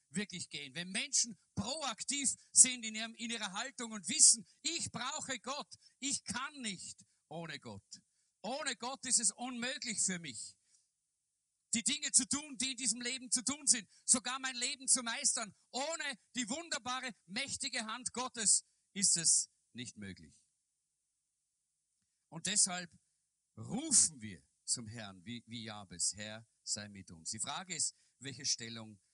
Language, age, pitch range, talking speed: German, 50-69, 155-245 Hz, 150 wpm